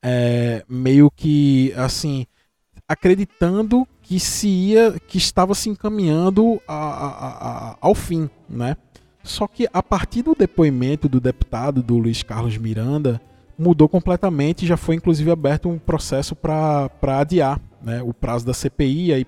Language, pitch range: Portuguese, 125-160 Hz